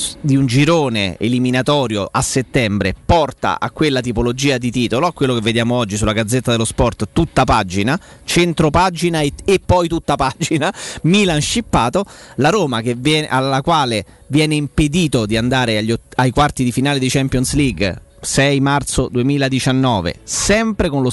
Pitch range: 125-155 Hz